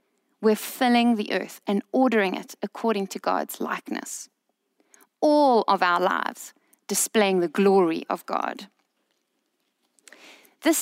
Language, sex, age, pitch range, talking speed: English, female, 20-39, 210-265 Hz, 115 wpm